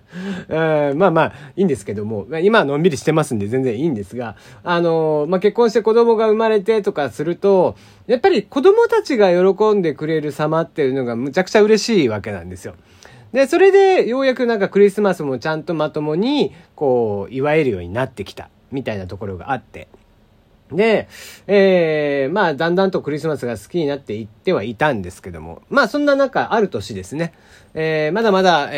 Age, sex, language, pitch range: 40-59, male, Japanese, 125-195 Hz